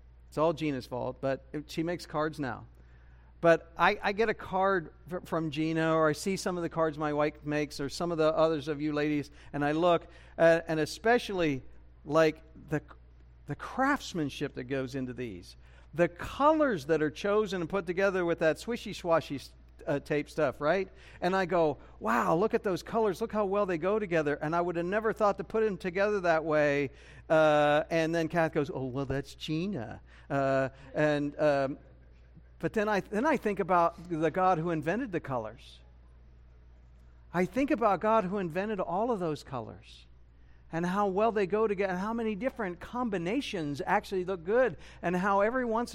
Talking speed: 185 wpm